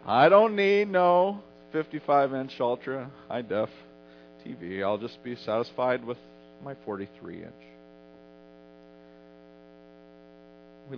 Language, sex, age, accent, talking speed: English, male, 40-59, American, 85 wpm